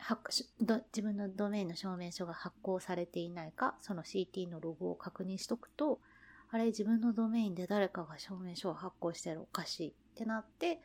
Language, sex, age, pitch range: Japanese, female, 30-49, 175-235 Hz